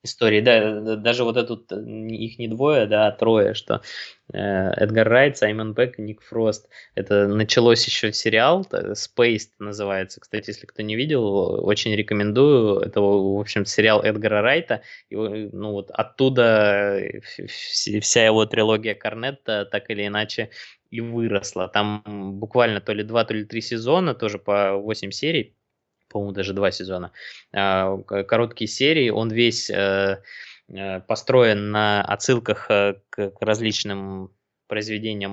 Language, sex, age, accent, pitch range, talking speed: Russian, male, 20-39, native, 100-115 Hz, 130 wpm